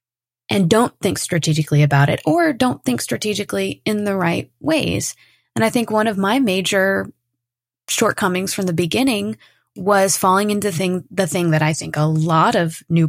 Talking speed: 175 wpm